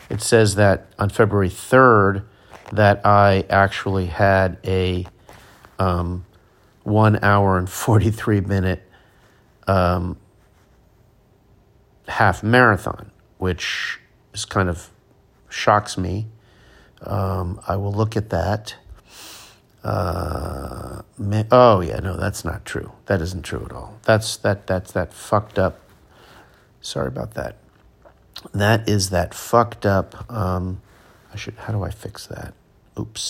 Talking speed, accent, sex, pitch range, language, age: 125 wpm, American, male, 95-110 Hz, English, 50-69